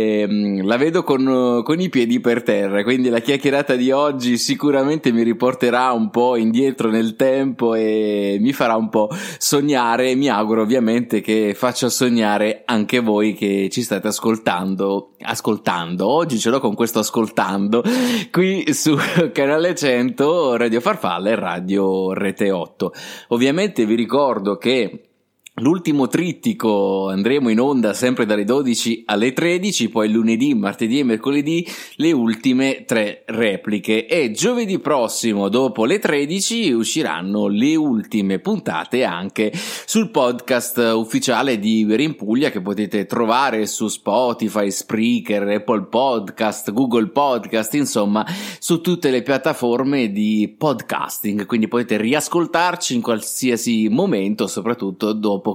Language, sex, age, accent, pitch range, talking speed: Italian, male, 20-39, native, 110-150 Hz, 130 wpm